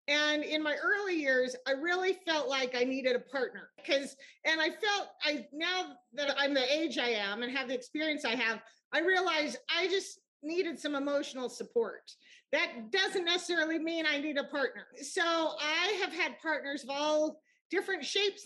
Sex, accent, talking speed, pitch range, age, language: female, American, 180 wpm, 265-340 Hz, 40-59, English